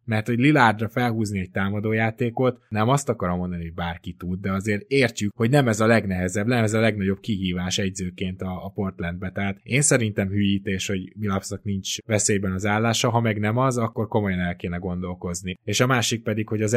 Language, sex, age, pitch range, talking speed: Hungarian, male, 20-39, 95-115 Hz, 195 wpm